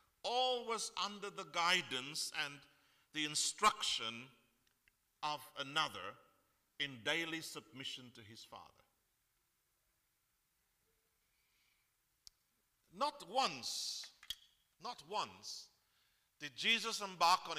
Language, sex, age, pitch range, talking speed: English, male, 50-69, 130-195 Hz, 80 wpm